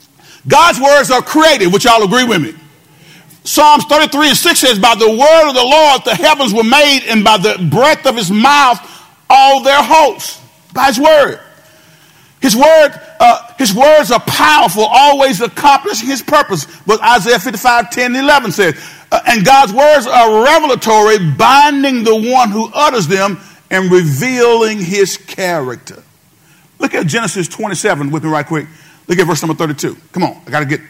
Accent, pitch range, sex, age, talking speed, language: American, 170-270 Hz, male, 50-69, 165 wpm, English